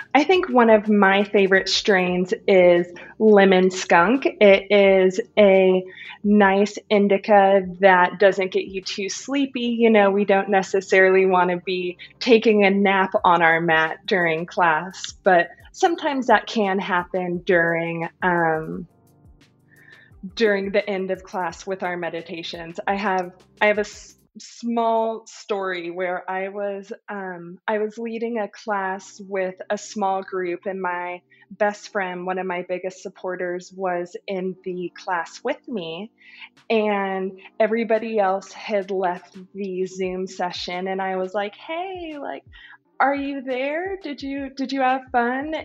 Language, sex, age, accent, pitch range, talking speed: English, female, 20-39, American, 185-220 Hz, 145 wpm